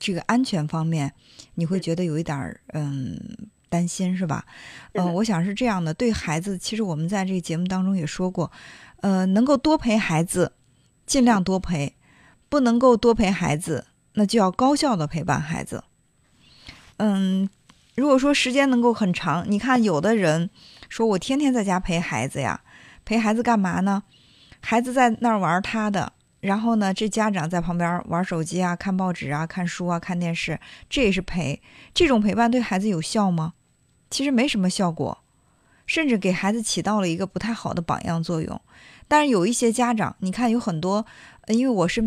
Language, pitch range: Chinese, 170-225 Hz